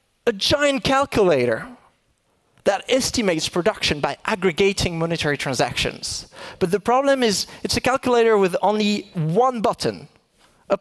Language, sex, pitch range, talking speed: English, male, 170-235 Hz, 120 wpm